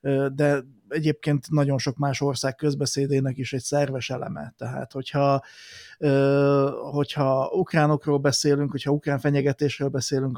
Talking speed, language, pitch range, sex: 115 wpm, Hungarian, 135-150 Hz, male